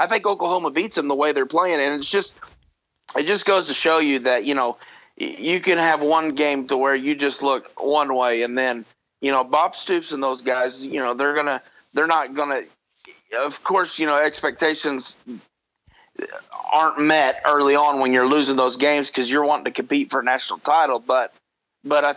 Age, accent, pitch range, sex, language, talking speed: 30-49, American, 130-155 Hz, male, English, 210 wpm